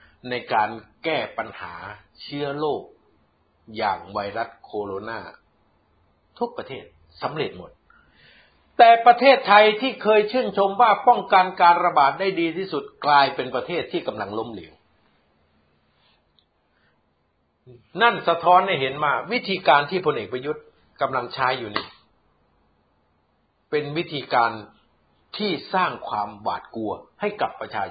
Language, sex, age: Thai, male, 60-79